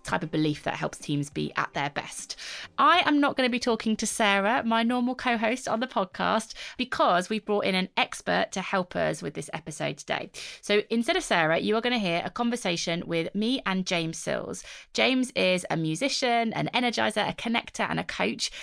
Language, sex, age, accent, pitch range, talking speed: English, female, 20-39, British, 160-235 Hz, 210 wpm